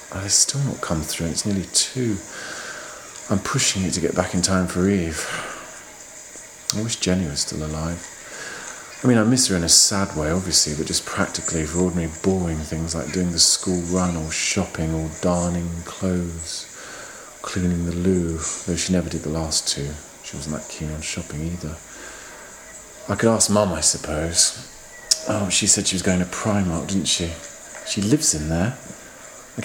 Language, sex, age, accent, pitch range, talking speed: English, male, 40-59, British, 80-100 Hz, 180 wpm